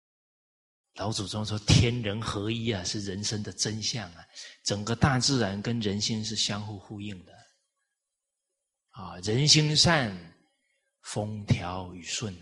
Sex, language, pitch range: male, Chinese, 105-170 Hz